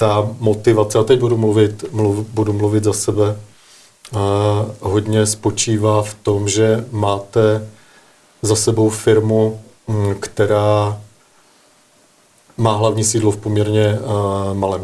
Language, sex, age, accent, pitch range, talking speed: Czech, male, 40-59, native, 105-115 Hz, 105 wpm